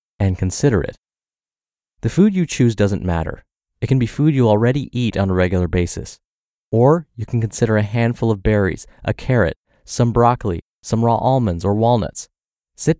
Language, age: English, 30-49